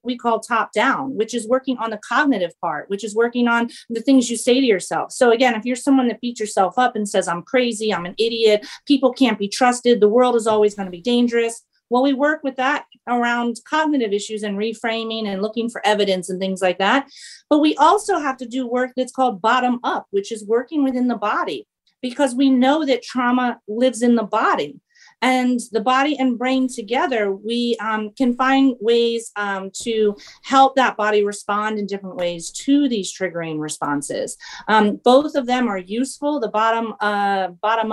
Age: 40-59